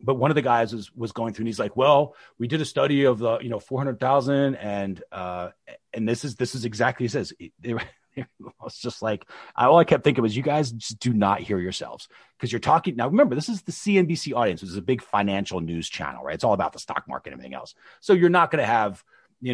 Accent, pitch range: American, 110-155 Hz